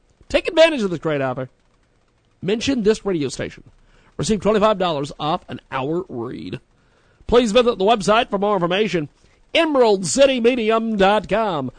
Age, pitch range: 50-69, 155-250 Hz